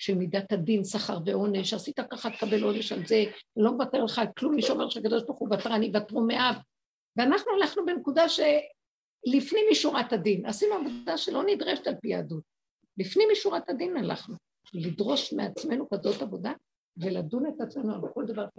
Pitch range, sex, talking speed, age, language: 210-285 Hz, female, 160 wpm, 50-69, Hebrew